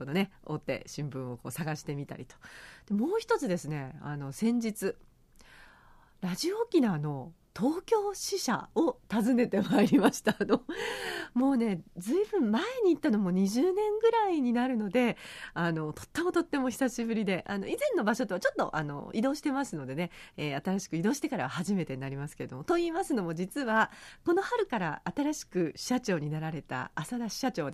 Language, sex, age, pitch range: Japanese, female, 40-59, 165-255 Hz